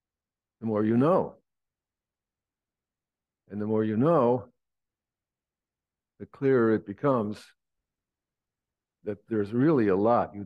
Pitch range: 100-125 Hz